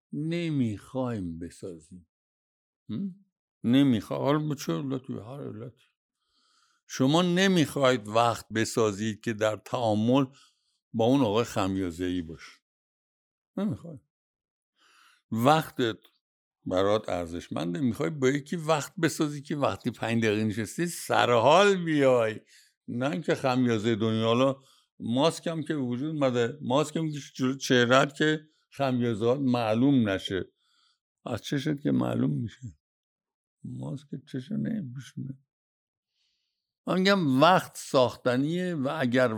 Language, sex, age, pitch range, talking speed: Persian, male, 60-79, 115-150 Hz, 95 wpm